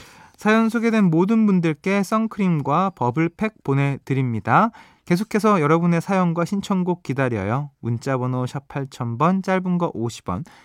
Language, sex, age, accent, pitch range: Korean, male, 20-39, native, 125-185 Hz